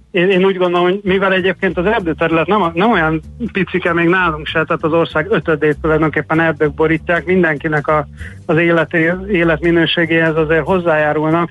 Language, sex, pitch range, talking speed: Hungarian, male, 155-170 Hz, 155 wpm